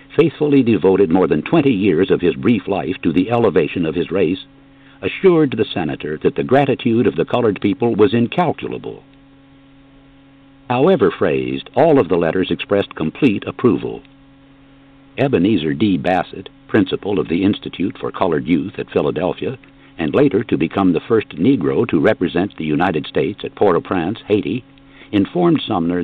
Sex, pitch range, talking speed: male, 110-135 Hz, 150 wpm